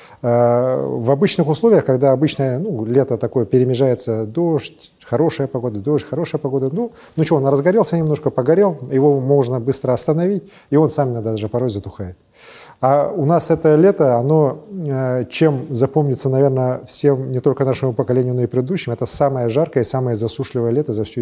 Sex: male